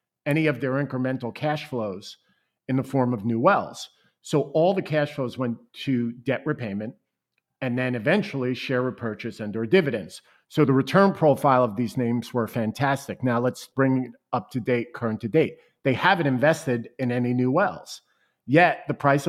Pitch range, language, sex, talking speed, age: 125-150 Hz, English, male, 180 wpm, 50-69